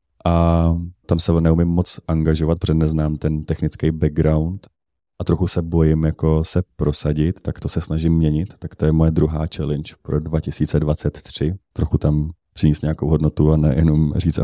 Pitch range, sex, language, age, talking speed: 80-90 Hz, male, Czech, 30-49, 160 wpm